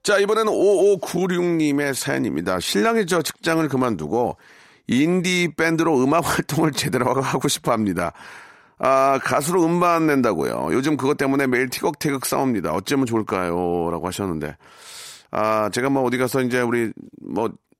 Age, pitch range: 40-59, 115-150 Hz